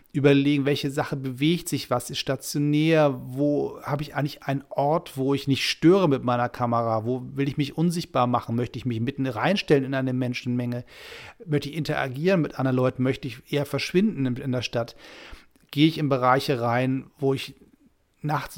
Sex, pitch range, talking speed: male, 120-150 Hz, 180 wpm